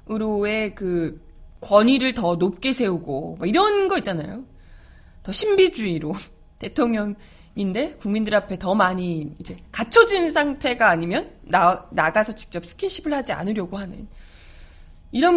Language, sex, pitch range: Korean, female, 180-280 Hz